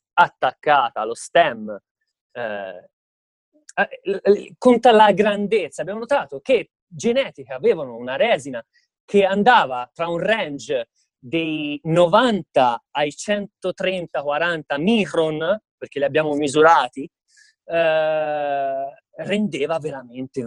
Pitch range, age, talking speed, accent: 155-250 Hz, 30-49, 90 wpm, native